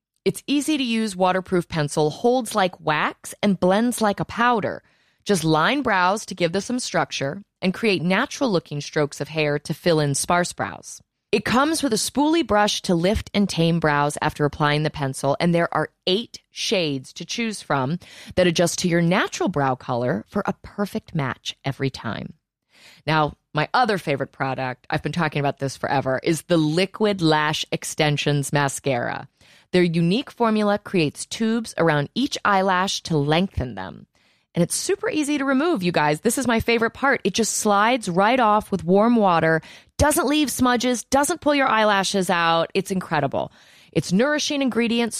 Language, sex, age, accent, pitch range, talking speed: English, female, 30-49, American, 150-225 Hz, 170 wpm